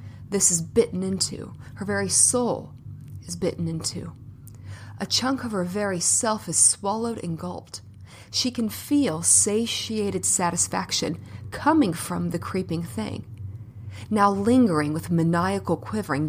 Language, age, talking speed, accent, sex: English, 30-49, 130 wpm, American, female